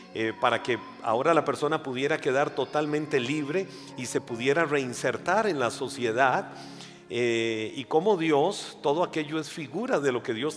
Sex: male